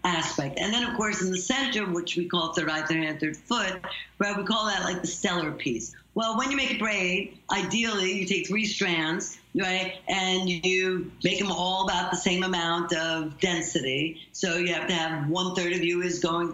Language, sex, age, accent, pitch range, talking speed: English, female, 60-79, American, 170-200 Hz, 215 wpm